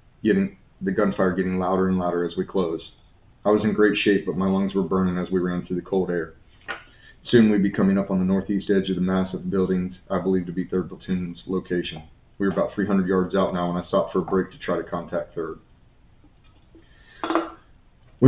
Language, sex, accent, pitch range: English, male, American, 90-100 Hz